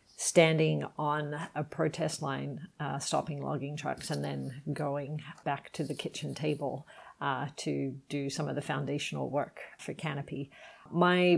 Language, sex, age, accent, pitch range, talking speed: English, female, 40-59, Australian, 140-160 Hz, 150 wpm